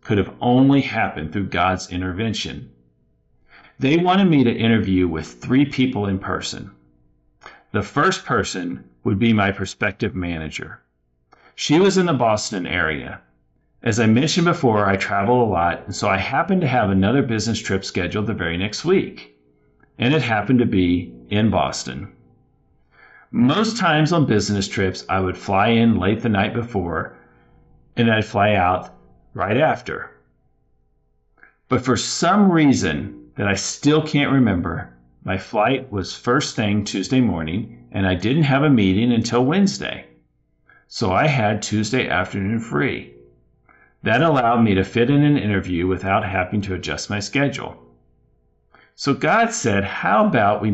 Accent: American